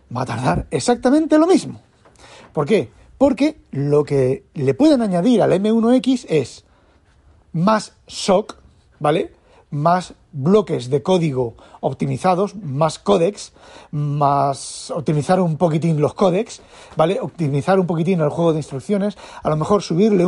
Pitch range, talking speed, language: 145-195 Hz, 135 wpm, Spanish